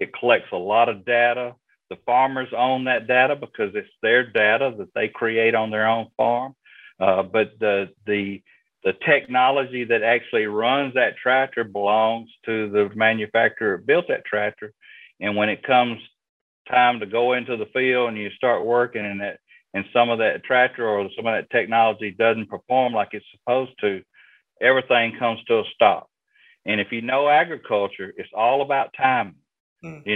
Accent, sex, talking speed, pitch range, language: American, male, 175 wpm, 110-130 Hz, English